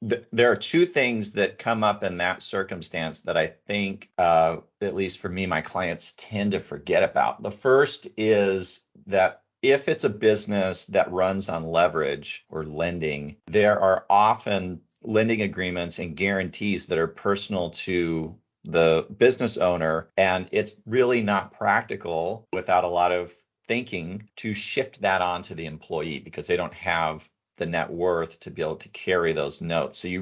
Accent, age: American, 40-59